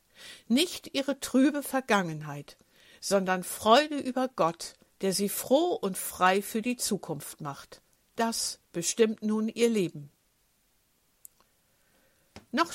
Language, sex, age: German, female, 60-79